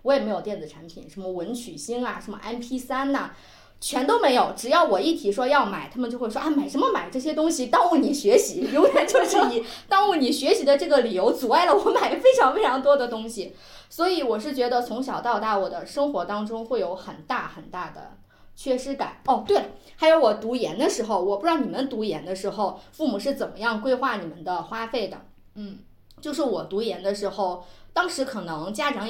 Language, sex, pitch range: Chinese, female, 205-290 Hz